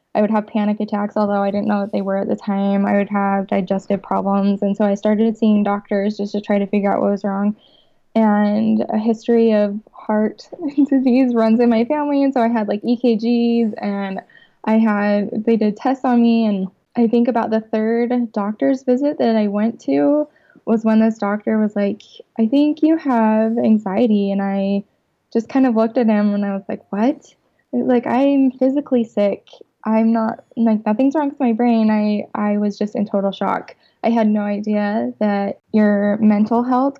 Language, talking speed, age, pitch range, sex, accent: English, 200 wpm, 20-39, 200-235 Hz, female, American